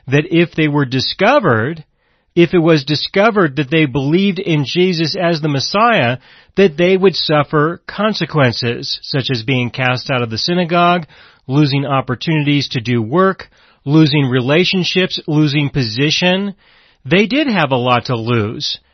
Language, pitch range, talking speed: English, 140-195 Hz, 145 wpm